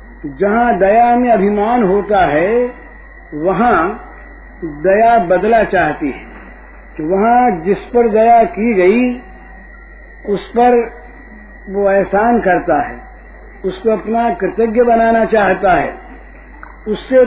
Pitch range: 200-240 Hz